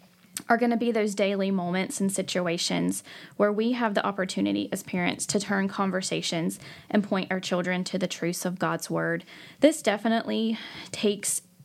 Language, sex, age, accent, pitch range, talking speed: English, female, 10-29, American, 185-225 Hz, 165 wpm